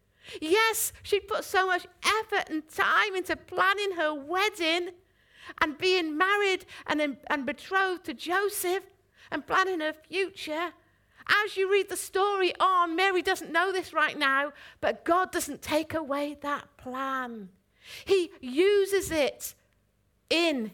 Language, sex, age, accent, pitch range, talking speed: English, female, 50-69, British, 290-380 Hz, 135 wpm